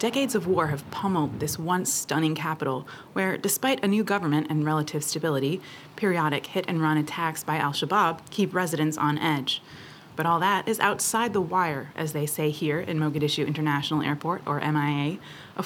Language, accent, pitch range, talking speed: English, American, 150-190 Hz, 170 wpm